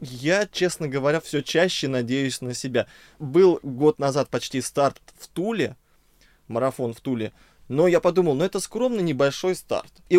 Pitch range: 125-170 Hz